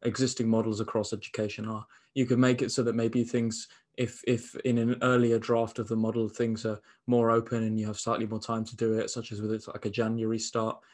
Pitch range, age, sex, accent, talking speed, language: 110-120 Hz, 20-39, male, British, 235 wpm, English